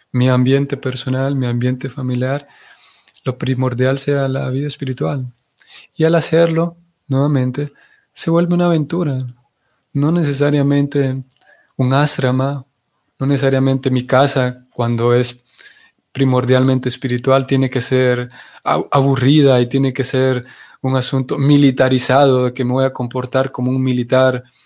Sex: male